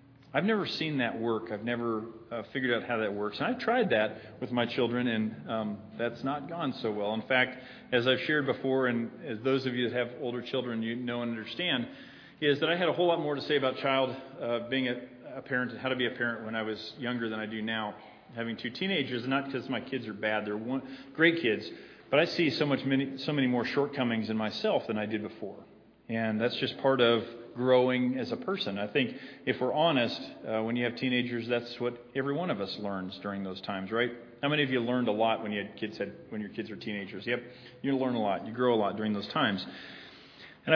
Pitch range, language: 110-135 Hz, English